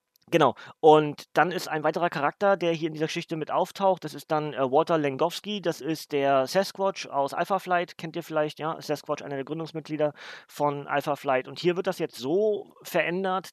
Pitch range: 145-170 Hz